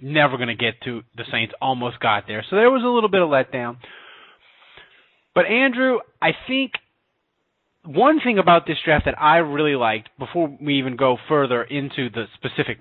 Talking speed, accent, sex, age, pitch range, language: 185 wpm, American, male, 30-49, 125-175 Hz, English